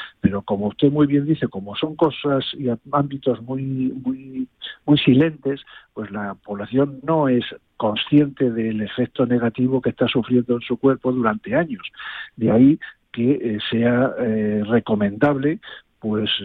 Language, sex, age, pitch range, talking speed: Spanish, male, 50-69, 110-130 Hz, 145 wpm